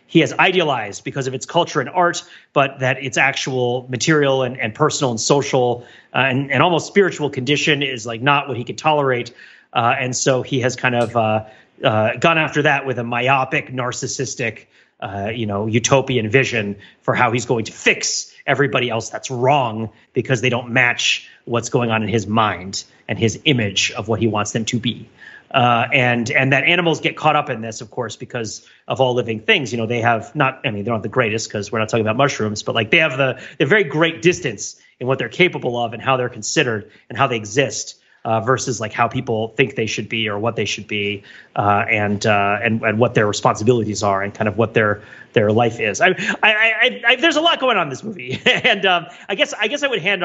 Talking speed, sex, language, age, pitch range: 230 wpm, male, English, 30-49, 115-145 Hz